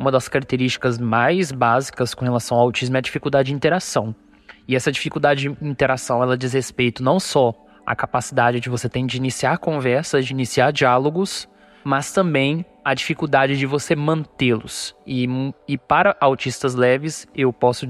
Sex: male